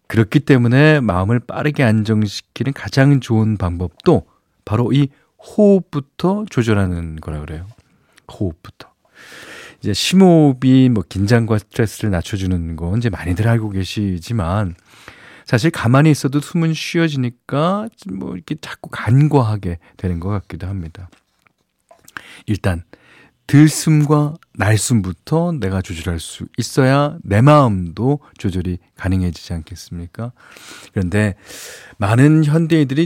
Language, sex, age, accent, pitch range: Korean, male, 40-59, native, 95-145 Hz